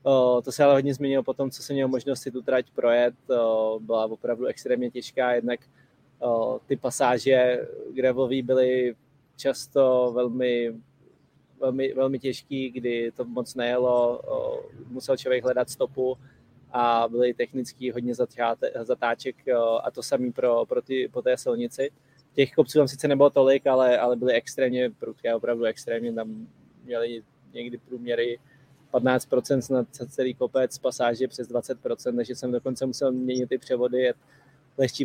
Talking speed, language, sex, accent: 140 wpm, Czech, male, native